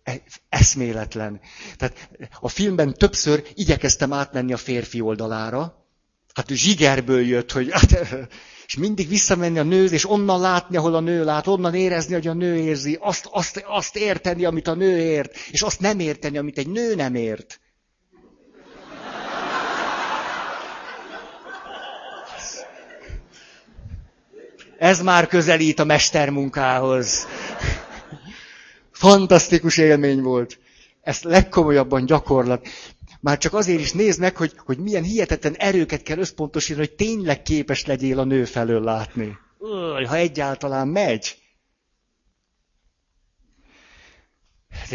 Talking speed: 115 wpm